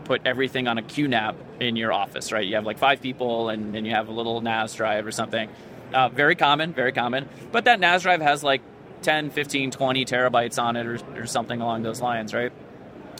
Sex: male